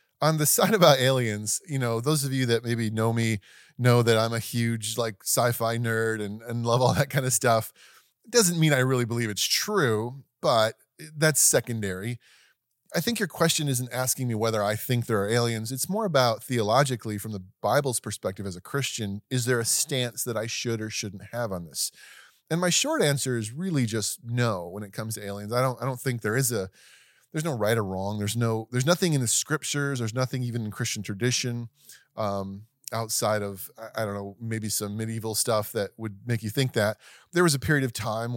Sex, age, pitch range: male, 30-49, 110-130 Hz